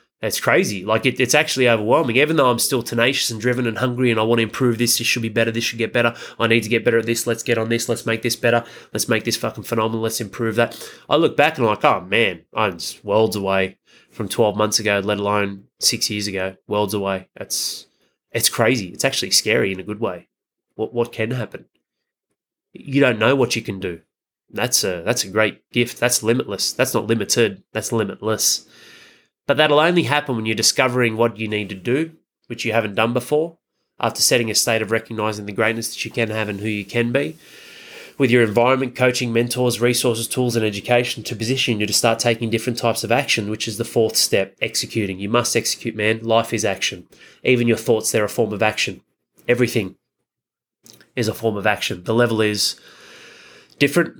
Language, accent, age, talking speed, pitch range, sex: English, Australian, 20-39, 215 wpm, 110-120 Hz, male